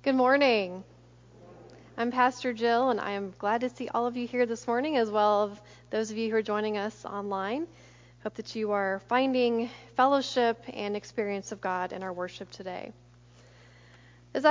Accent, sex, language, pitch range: American, female, English, 200-255 Hz